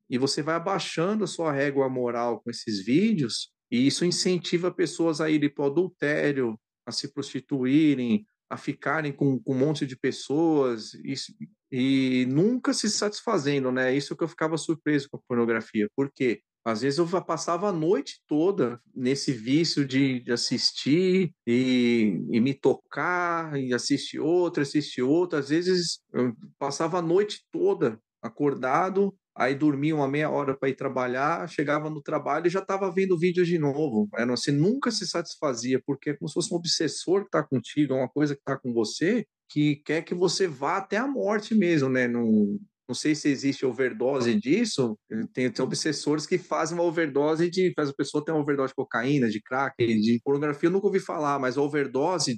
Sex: male